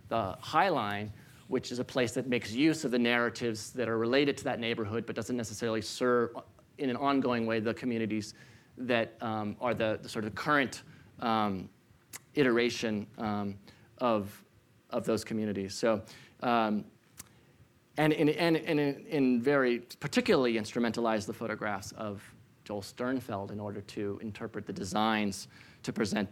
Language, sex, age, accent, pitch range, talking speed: English, male, 30-49, American, 110-135 Hz, 155 wpm